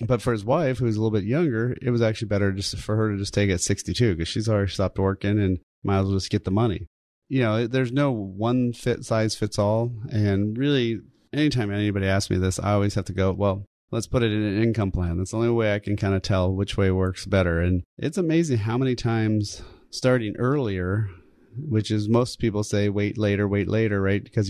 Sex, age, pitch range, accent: male, 30-49, 95-115 Hz, American